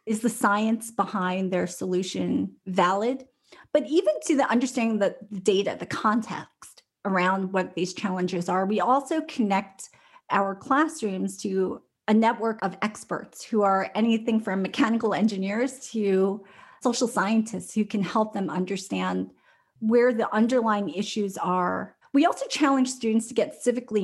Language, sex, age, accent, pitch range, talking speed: English, female, 30-49, American, 185-230 Hz, 145 wpm